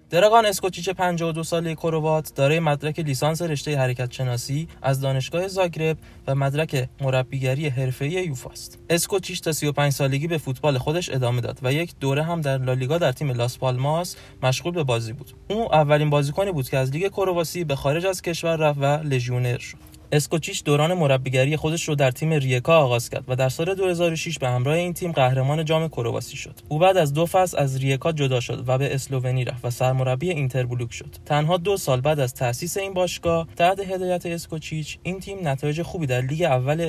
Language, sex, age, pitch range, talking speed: Persian, male, 20-39, 130-175 Hz, 185 wpm